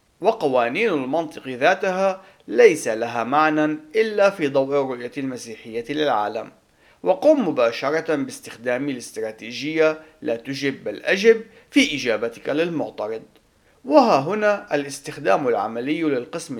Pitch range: 125-165 Hz